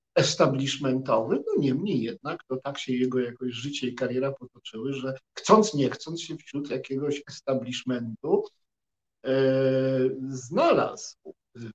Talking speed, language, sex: 115 wpm, Polish, male